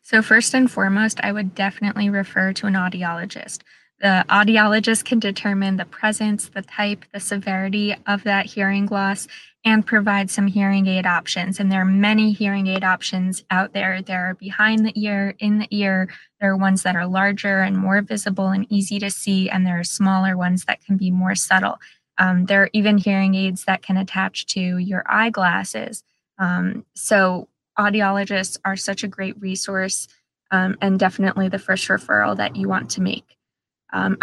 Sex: female